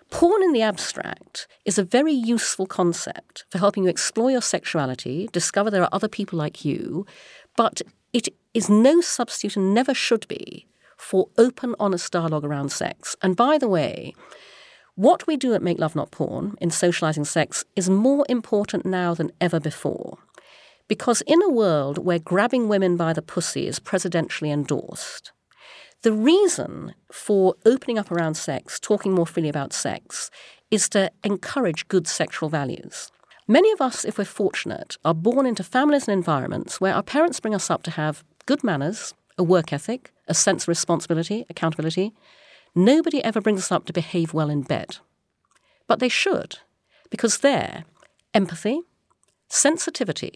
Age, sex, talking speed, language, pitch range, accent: 40-59, female, 165 wpm, English, 170-240 Hz, British